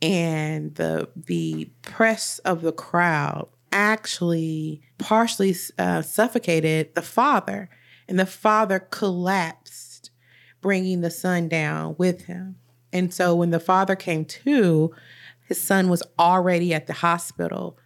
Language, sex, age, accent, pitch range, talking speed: English, female, 30-49, American, 155-185 Hz, 125 wpm